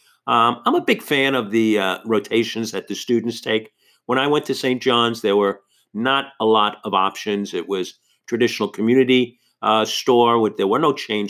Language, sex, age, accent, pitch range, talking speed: English, male, 50-69, American, 105-135 Hz, 190 wpm